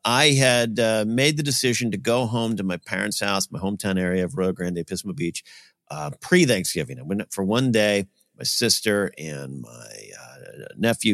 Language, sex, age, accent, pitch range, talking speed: English, male, 50-69, American, 90-130 Hz, 185 wpm